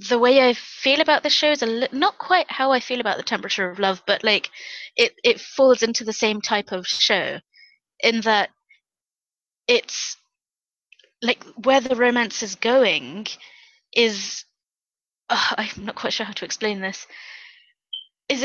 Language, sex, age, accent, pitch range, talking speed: English, female, 20-39, British, 205-255 Hz, 155 wpm